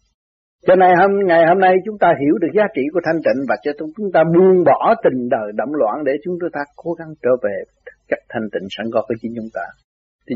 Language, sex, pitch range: Vietnamese, male, 125-185 Hz